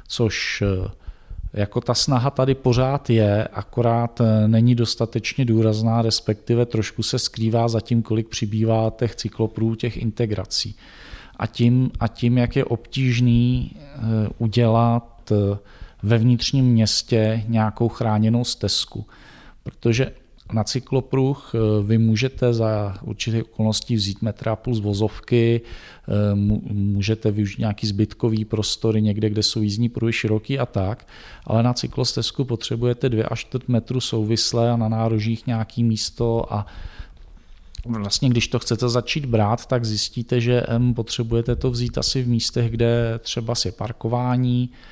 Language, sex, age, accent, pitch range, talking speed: Czech, male, 40-59, native, 110-120 Hz, 130 wpm